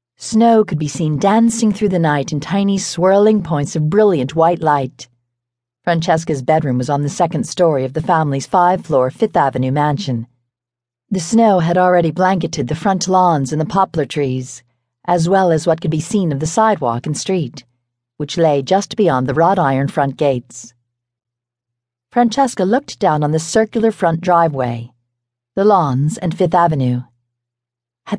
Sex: female